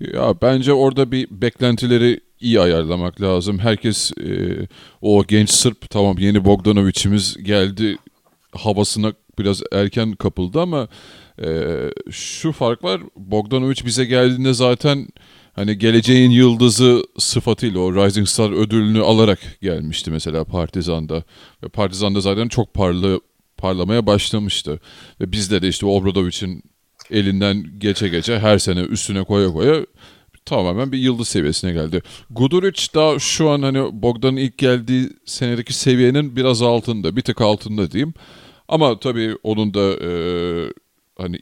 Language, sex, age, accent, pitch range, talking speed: Turkish, male, 40-59, native, 95-120 Hz, 130 wpm